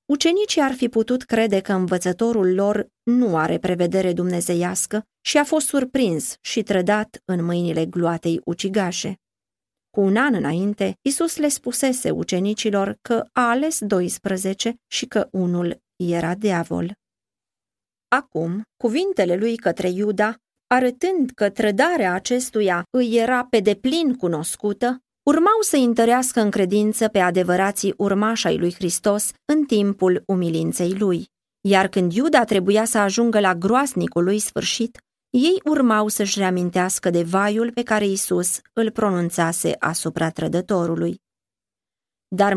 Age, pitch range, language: 30-49, 180-230 Hz, Romanian